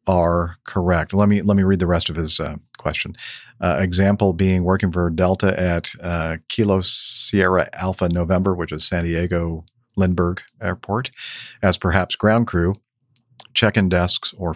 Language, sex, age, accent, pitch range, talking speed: English, male, 50-69, American, 85-100 Hz, 155 wpm